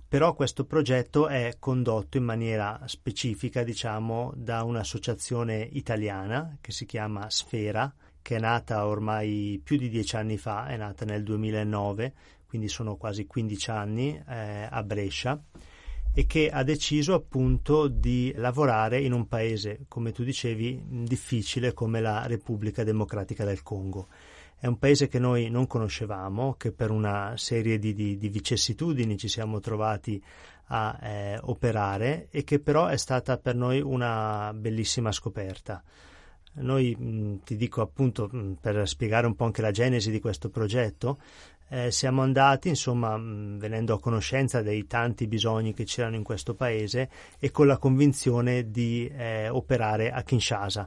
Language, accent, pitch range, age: Italian, native, 105-125 Hz, 30-49